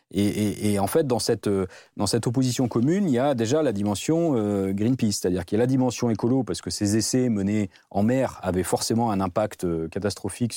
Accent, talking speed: French, 215 wpm